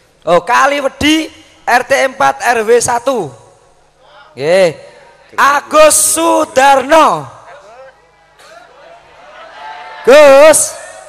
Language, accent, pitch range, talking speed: Indonesian, native, 245-305 Hz, 65 wpm